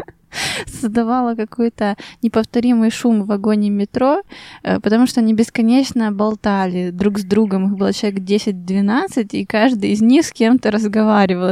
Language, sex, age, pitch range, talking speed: Russian, female, 20-39, 200-235 Hz, 135 wpm